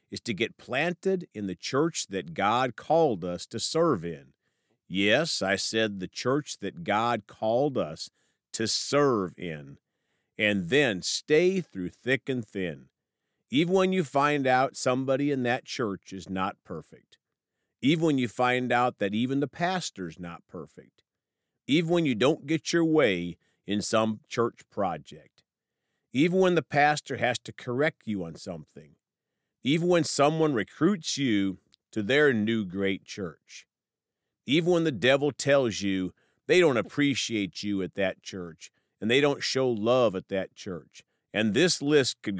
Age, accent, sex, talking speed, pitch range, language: 50-69, American, male, 160 wpm, 95-145 Hz, English